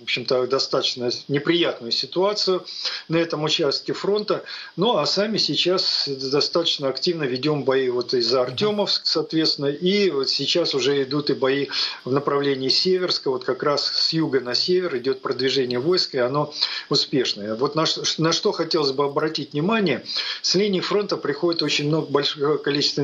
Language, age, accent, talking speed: Russian, 50-69, native, 155 wpm